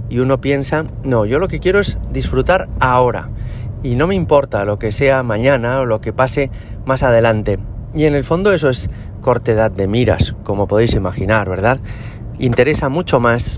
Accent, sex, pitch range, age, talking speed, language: Spanish, male, 110-135 Hz, 30-49, 180 wpm, Spanish